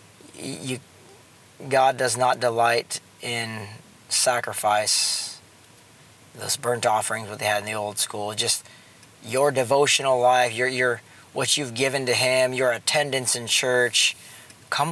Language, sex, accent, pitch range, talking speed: English, male, American, 110-135 Hz, 135 wpm